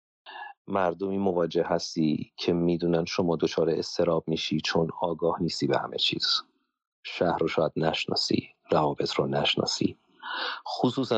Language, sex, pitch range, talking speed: Persian, male, 85-125 Hz, 125 wpm